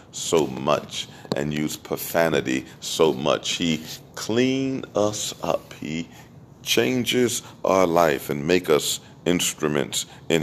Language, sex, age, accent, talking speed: English, male, 40-59, American, 115 wpm